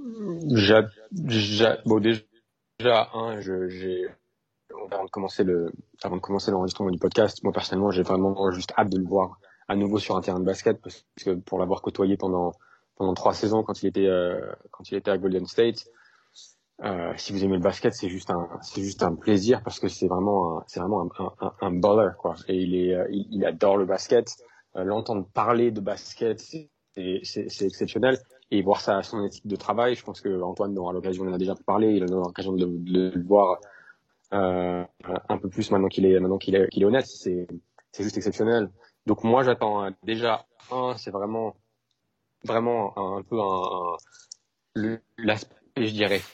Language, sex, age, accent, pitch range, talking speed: French, male, 30-49, French, 95-115 Hz, 175 wpm